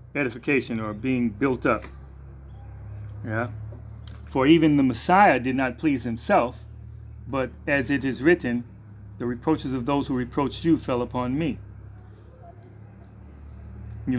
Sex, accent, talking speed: male, American, 125 wpm